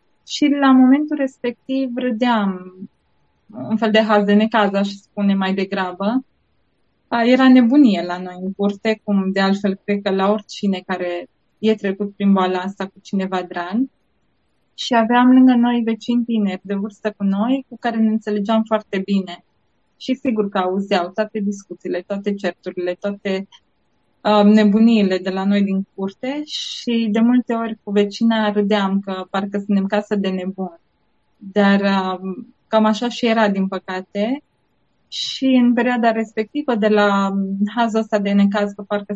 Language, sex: Romanian, female